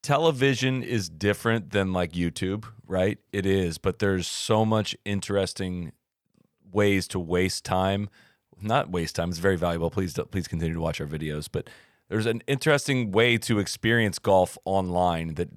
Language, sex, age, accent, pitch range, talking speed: English, male, 30-49, American, 90-115 Hz, 160 wpm